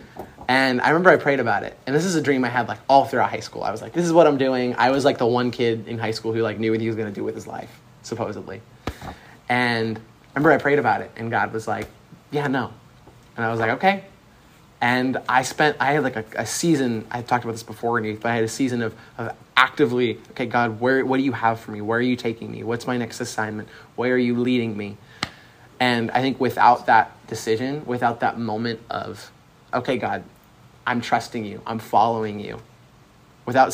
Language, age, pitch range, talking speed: English, 20-39, 110-125 Hz, 235 wpm